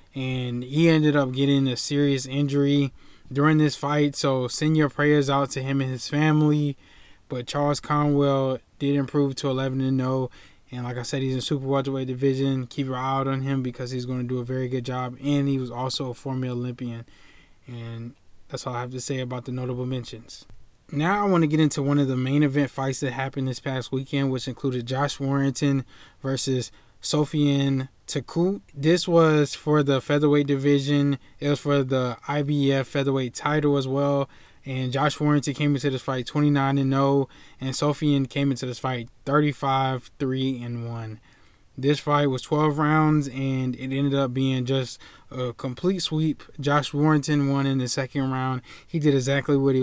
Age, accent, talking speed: 20-39, American, 185 wpm